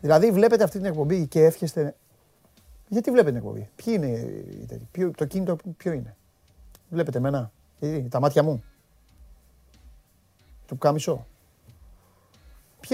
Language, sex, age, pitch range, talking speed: Greek, male, 40-59, 115-165 Hz, 115 wpm